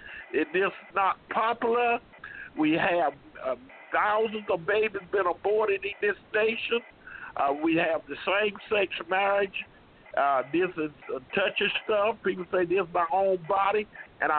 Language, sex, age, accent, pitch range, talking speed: English, male, 50-69, American, 180-215 Hz, 140 wpm